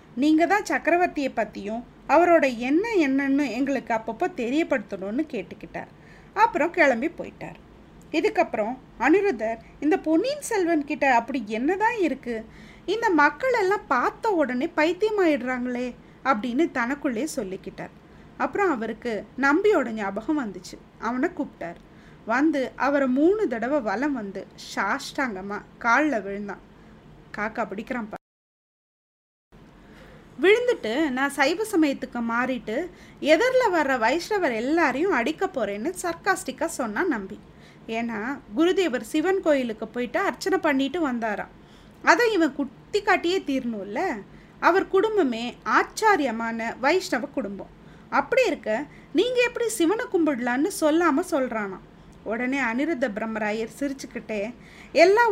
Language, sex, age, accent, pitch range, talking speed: Tamil, female, 20-39, native, 230-335 Hz, 100 wpm